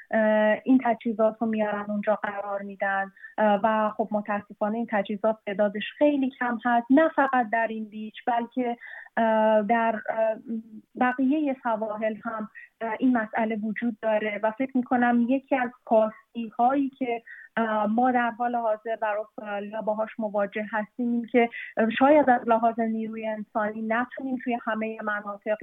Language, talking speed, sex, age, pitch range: Persian, 135 wpm, female, 30-49, 215-245 Hz